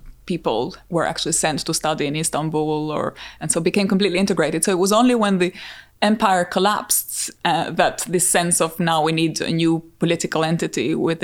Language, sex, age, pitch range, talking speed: English, female, 20-39, 165-190 Hz, 185 wpm